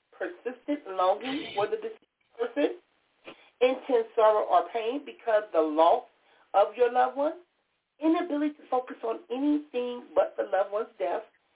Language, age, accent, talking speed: English, 40-59, American, 140 wpm